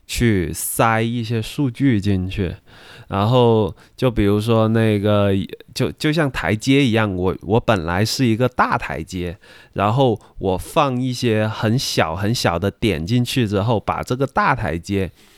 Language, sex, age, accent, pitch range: Chinese, male, 20-39, native, 95-120 Hz